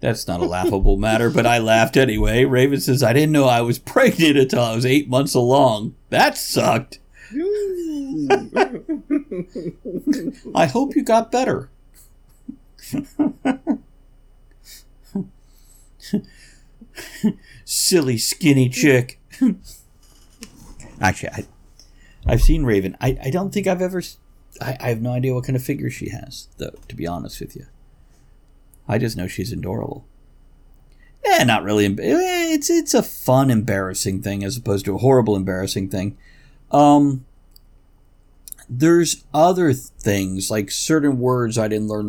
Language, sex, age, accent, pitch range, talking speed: English, male, 50-69, American, 95-150 Hz, 135 wpm